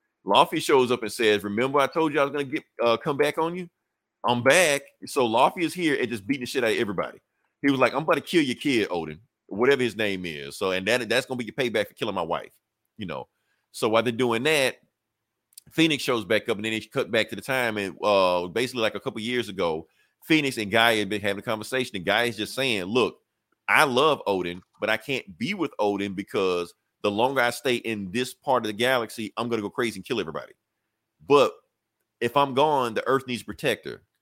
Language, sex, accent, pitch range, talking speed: English, male, American, 105-140 Hz, 240 wpm